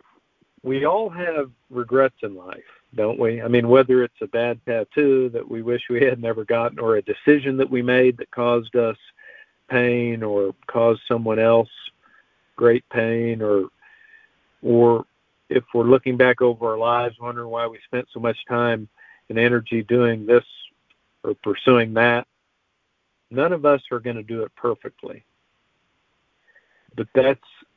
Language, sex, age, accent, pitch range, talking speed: English, male, 50-69, American, 115-130 Hz, 155 wpm